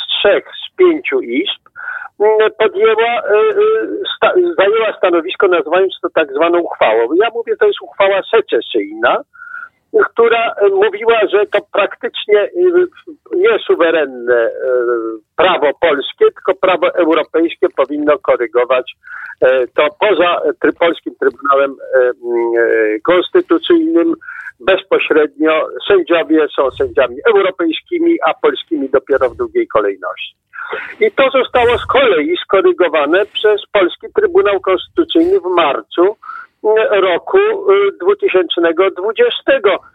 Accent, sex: native, male